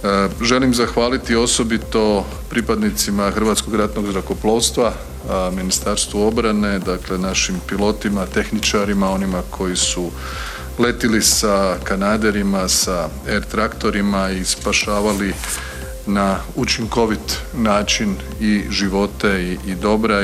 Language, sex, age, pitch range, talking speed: Croatian, male, 40-59, 90-105 Hz, 95 wpm